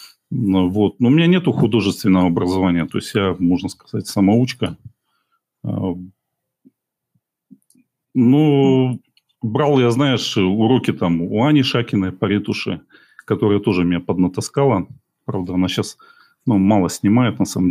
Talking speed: 120 wpm